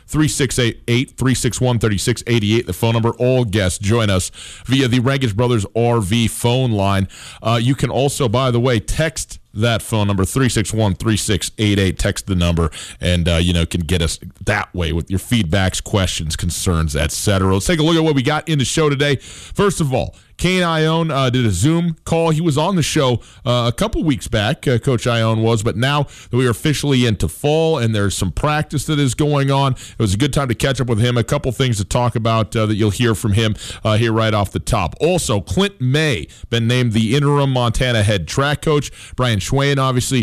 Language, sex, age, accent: English, male, 40-59, American